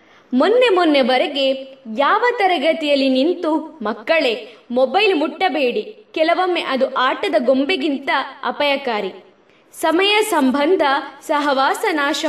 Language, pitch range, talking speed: Kannada, 265-345 Hz, 85 wpm